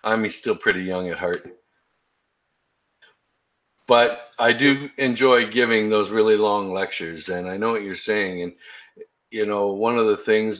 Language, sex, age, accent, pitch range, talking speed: English, male, 50-69, American, 90-115 Hz, 160 wpm